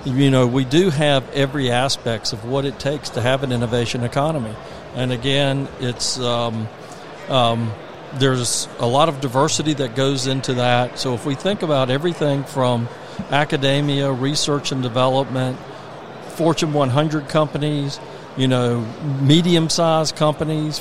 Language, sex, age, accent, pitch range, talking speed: English, male, 50-69, American, 130-155 Hz, 140 wpm